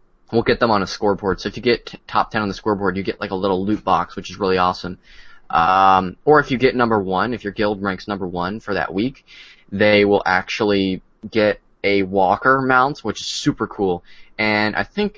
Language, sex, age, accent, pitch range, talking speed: English, male, 20-39, American, 95-110 Hz, 225 wpm